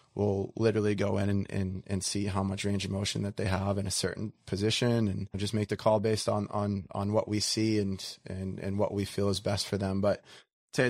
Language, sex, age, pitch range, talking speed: English, male, 20-39, 100-110 Hz, 240 wpm